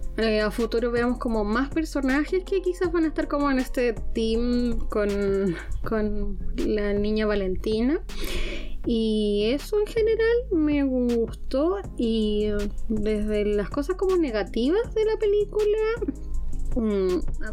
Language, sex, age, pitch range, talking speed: Spanish, female, 20-39, 215-285 Hz, 125 wpm